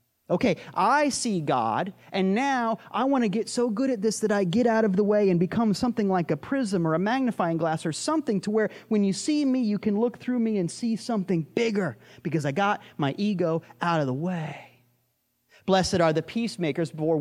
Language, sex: English, male